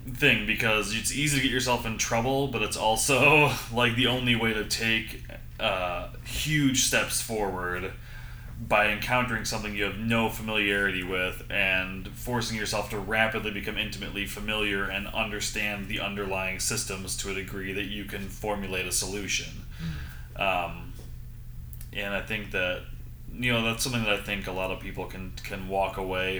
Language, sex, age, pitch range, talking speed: English, male, 20-39, 95-115 Hz, 165 wpm